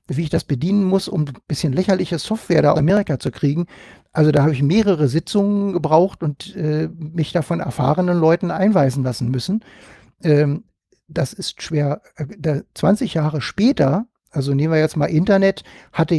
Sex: male